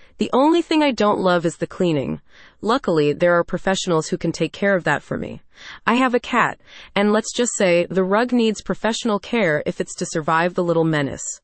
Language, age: English, 30-49